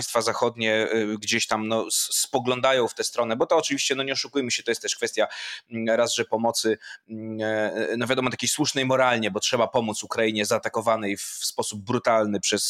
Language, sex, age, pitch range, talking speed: Polish, male, 20-39, 115-135 Hz, 170 wpm